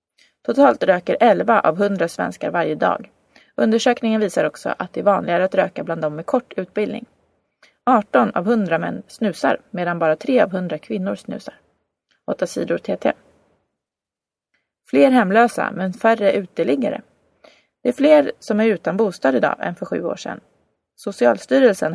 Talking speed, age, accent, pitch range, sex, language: 155 wpm, 30-49, native, 185-245 Hz, female, Swedish